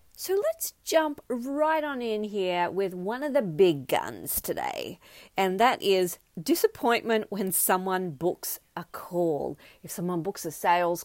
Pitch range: 165-220 Hz